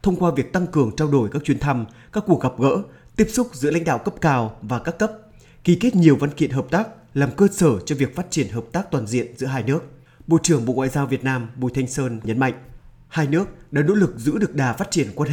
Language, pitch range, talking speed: Vietnamese, 130-170 Hz, 265 wpm